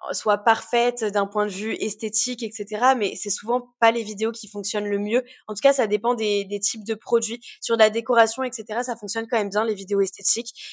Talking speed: 230 wpm